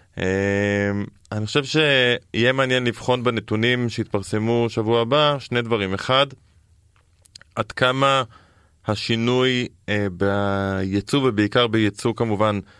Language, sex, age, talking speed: Hebrew, male, 20-39, 100 wpm